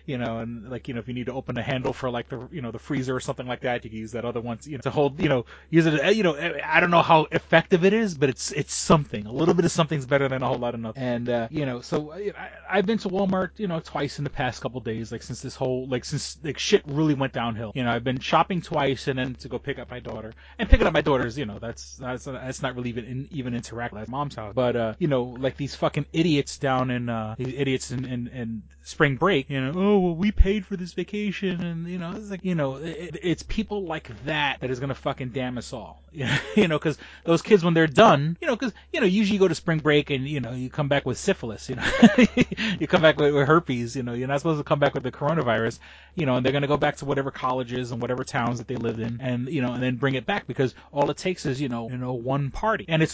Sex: male